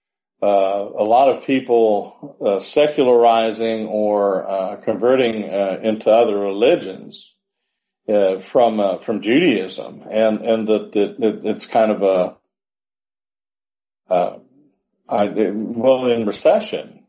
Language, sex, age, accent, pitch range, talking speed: English, male, 50-69, American, 100-125 Hz, 110 wpm